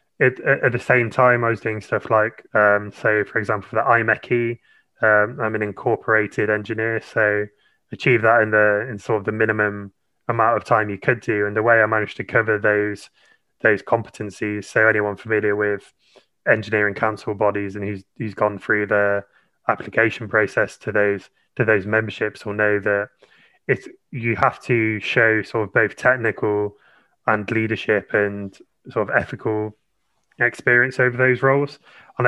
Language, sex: English, male